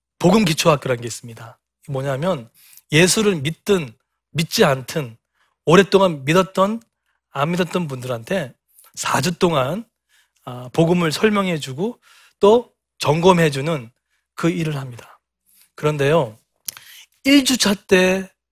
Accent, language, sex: native, Korean, male